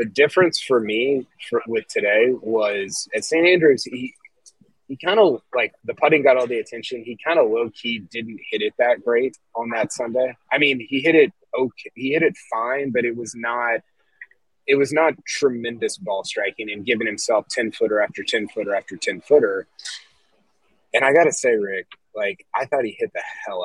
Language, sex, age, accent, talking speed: English, male, 20-39, American, 200 wpm